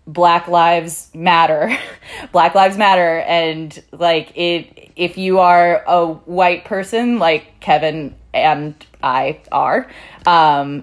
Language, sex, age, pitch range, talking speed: English, female, 20-39, 150-170 Hz, 115 wpm